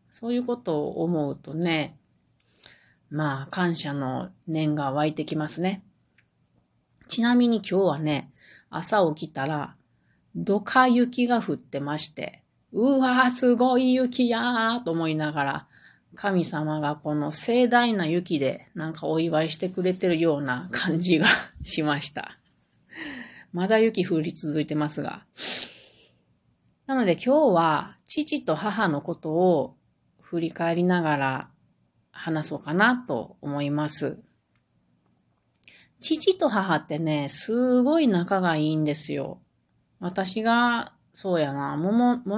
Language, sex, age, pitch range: Japanese, female, 30-49, 150-225 Hz